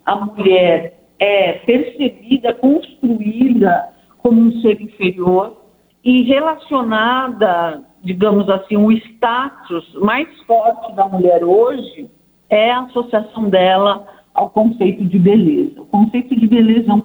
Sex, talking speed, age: female, 120 wpm, 50-69